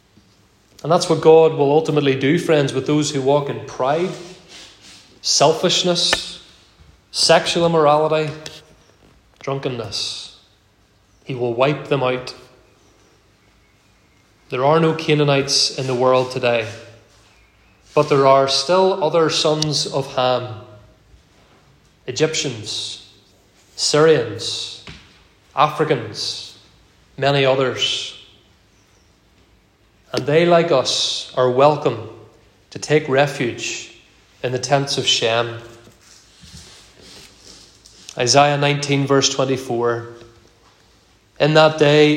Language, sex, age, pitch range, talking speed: English, male, 30-49, 105-155 Hz, 90 wpm